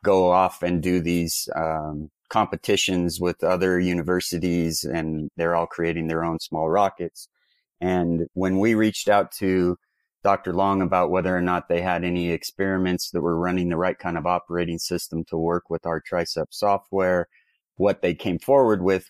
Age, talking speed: 30-49, 170 wpm